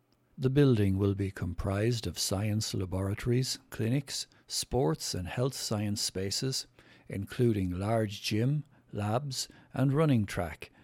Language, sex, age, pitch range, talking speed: English, male, 60-79, 100-130 Hz, 115 wpm